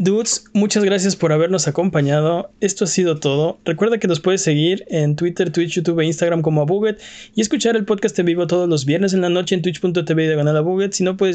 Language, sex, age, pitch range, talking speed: Spanish, male, 20-39, 155-185 Hz, 220 wpm